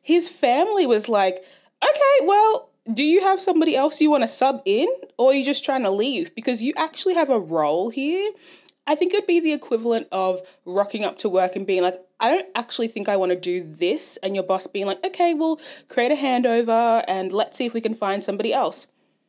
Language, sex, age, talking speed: English, female, 20-39, 220 wpm